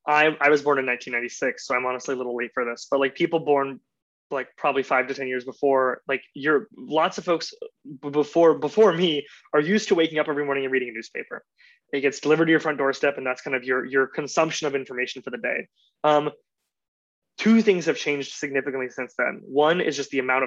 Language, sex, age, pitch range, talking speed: English, male, 20-39, 135-155 Hz, 225 wpm